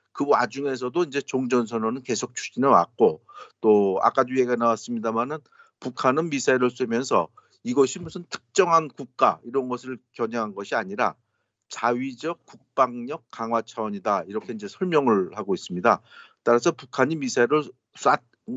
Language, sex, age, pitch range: Korean, male, 50-69, 115-150 Hz